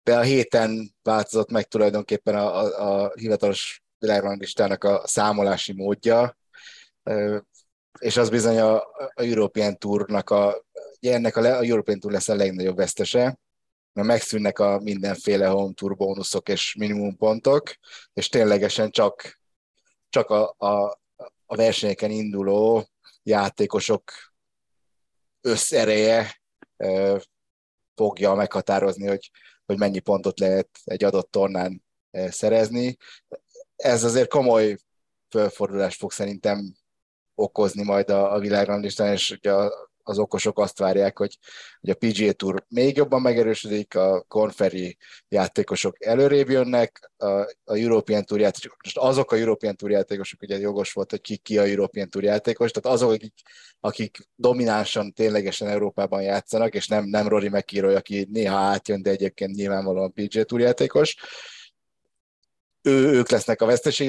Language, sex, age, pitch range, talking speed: Hungarian, male, 30-49, 100-115 Hz, 130 wpm